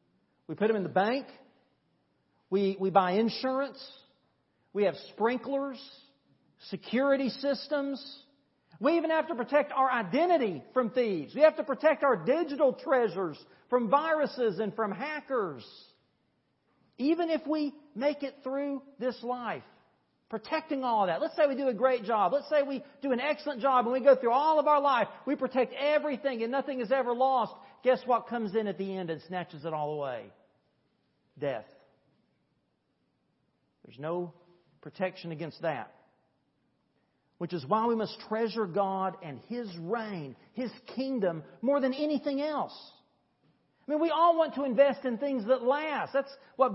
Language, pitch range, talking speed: English, 220-280 Hz, 160 wpm